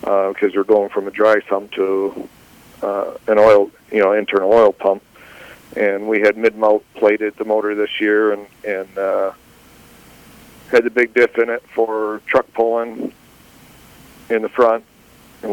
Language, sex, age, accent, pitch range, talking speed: English, male, 40-59, American, 105-120 Hz, 165 wpm